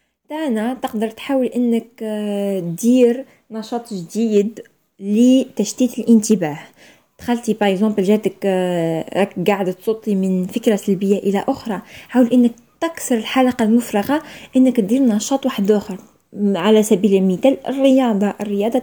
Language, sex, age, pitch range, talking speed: Arabic, female, 20-39, 205-250 Hz, 110 wpm